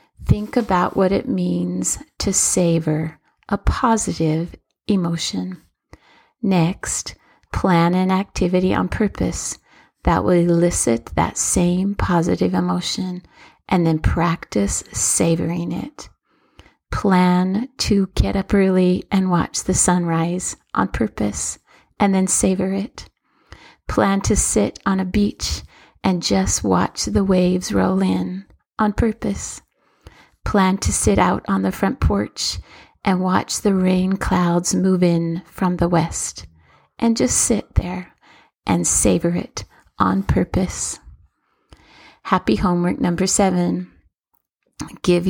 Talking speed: 120 wpm